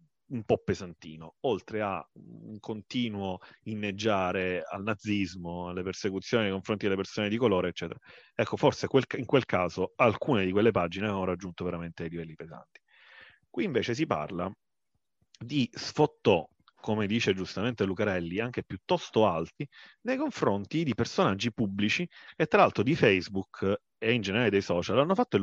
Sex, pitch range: male, 95-135 Hz